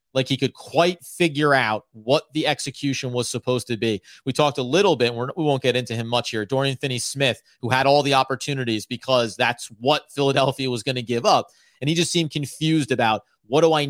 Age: 30-49